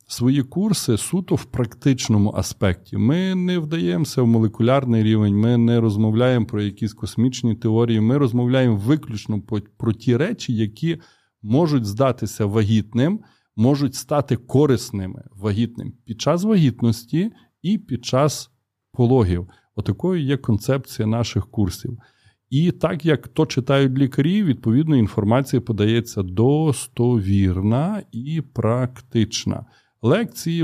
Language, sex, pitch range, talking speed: Ukrainian, male, 110-140 Hz, 115 wpm